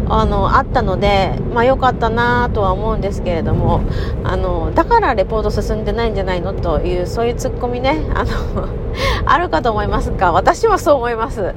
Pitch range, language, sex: 195-290 Hz, Japanese, female